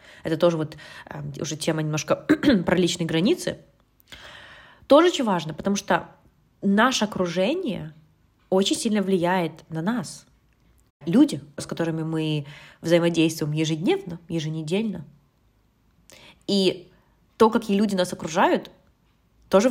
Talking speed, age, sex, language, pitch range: 110 wpm, 20-39, female, Russian, 160-200 Hz